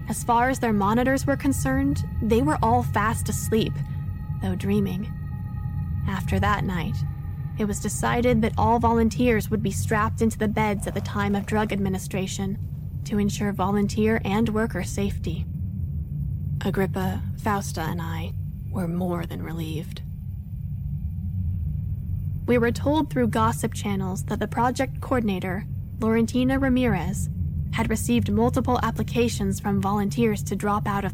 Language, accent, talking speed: English, American, 135 wpm